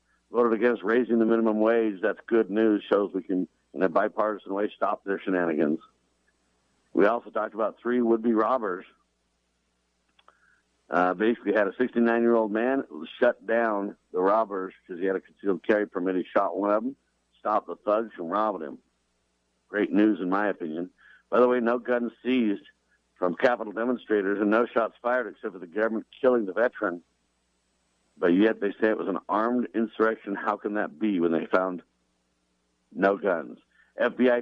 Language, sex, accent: English, male, American